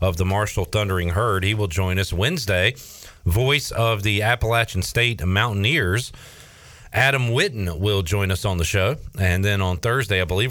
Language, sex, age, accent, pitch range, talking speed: English, male, 40-59, American, 95-115 Hz, 170 wpm